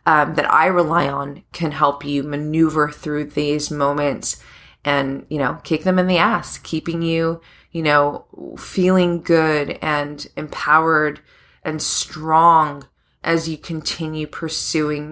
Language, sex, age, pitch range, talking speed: English, female, 20-39, 145-175 Hz, 135 wpm